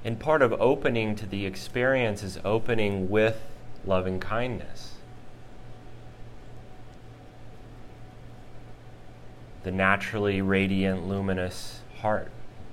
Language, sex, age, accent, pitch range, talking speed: English, male, 30-49, American, 95-120 Hz, 80 wpm